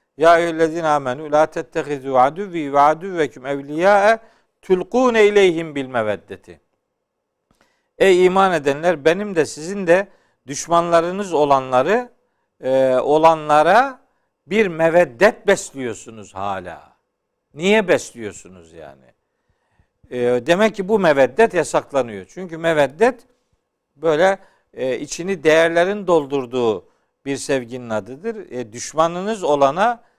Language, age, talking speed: Turkish, 50-69, 95 wpm